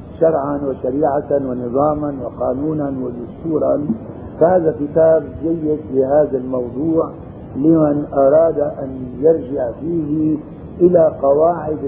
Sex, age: male, 50-69